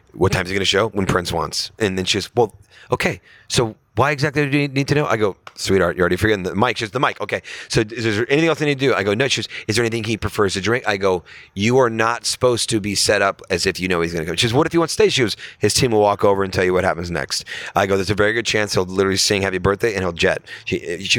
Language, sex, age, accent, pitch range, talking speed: English, male, 30-49, American, 100-135 Hz, 315 wpm